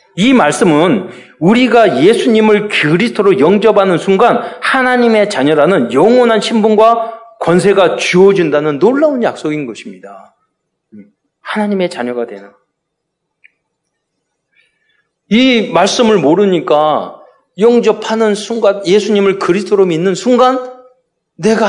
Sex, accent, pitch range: male, native, 165-245 Hz